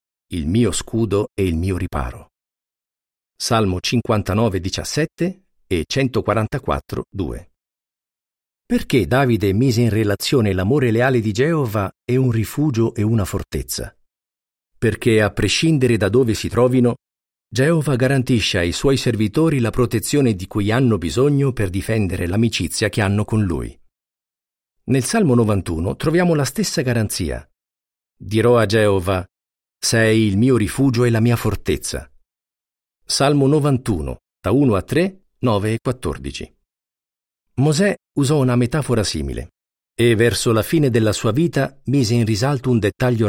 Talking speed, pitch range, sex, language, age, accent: 135 wpm, 90-125 Hz, male, Italian, 50-69, native